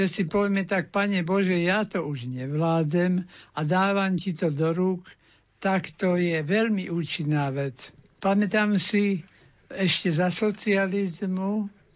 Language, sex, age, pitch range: Slovak, male, 60-79, 165-195 Hz